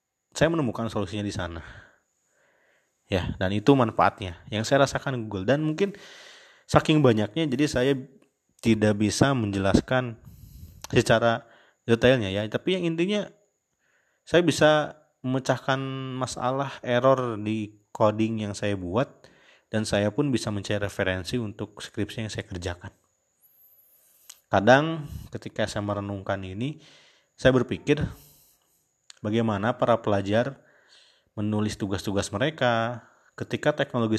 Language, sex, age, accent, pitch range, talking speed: Indonesian, male, 30-49, native, 105-135 Hz, 110 wpm